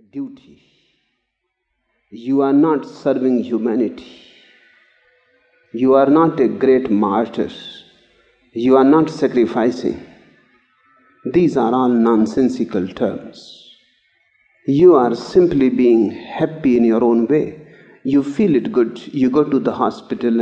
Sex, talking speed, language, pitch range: male, 115 wpm, English, 120-190 Hz